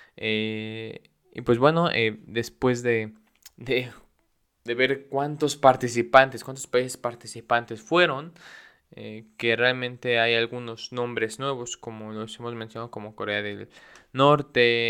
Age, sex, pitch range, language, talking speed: 20-39, male, 115-140 Hz, Spanish, 120 wpm